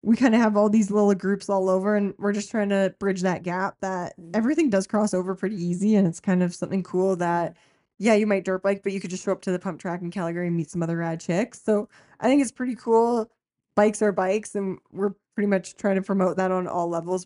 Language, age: English, 20-39